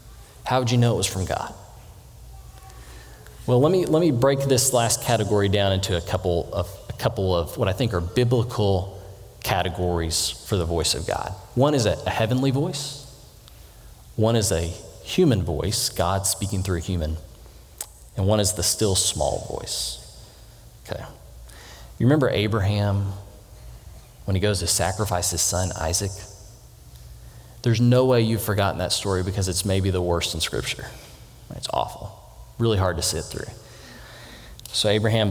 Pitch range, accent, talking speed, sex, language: 85-110 Hz, American, 155 wpm, male, English